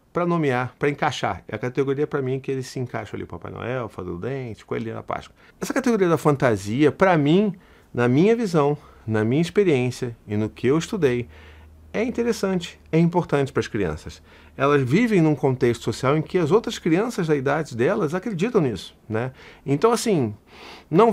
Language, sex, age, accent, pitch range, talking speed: Portuguese, male, 40-59, Brazilian, 120-170 Hz, 185 wpm